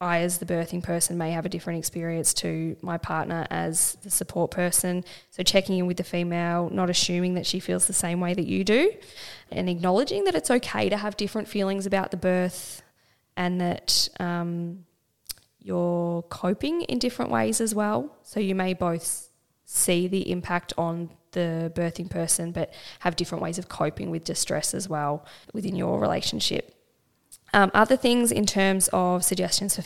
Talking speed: 175 wpm